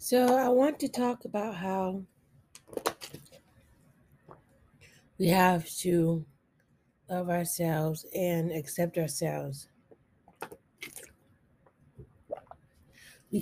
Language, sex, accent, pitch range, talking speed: English, female, American, 160-180 Hz, 70 wpm